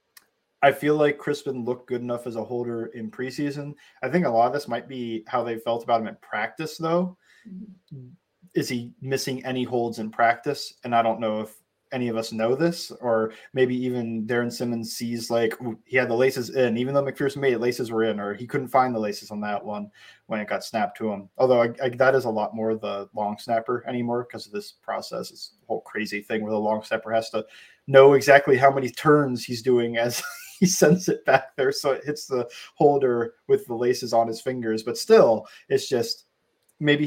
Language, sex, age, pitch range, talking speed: English, male, 20-39, 115-140 Hz, 215 wpm